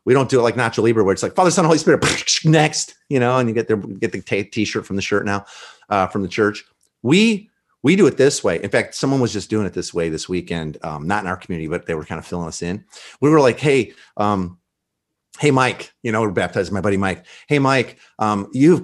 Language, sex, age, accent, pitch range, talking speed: English, male, 40-59, American, 100-130 Hz, 250 wpm